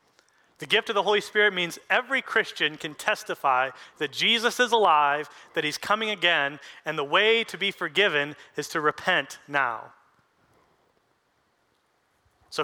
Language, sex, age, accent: English, male, 30-49, American